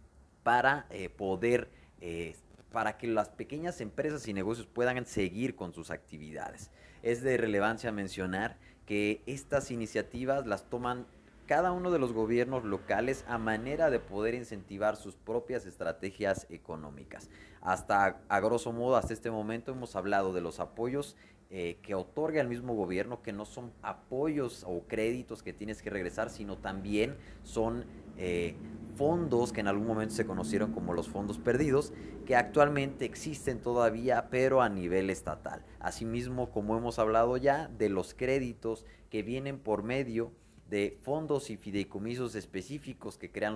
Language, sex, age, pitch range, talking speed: Spanish, male, 30-49, 95-120 Hz, 150 wpm